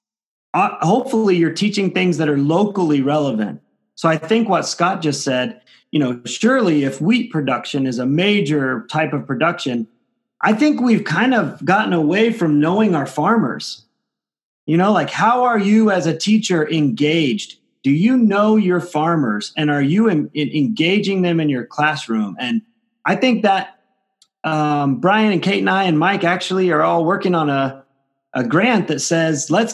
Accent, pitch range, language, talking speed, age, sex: American, 145-200 Hz, English, 170 wpm, 30-49, male